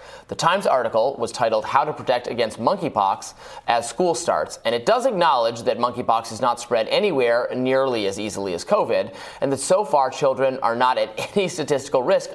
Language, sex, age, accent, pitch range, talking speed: English, male, 30-49, American, 115-155 Hz, 190 wpm